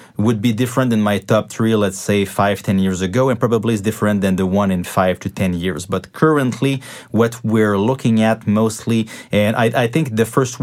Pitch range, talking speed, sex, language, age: 100-115 Hz, 215 wpm, male, English, 30-49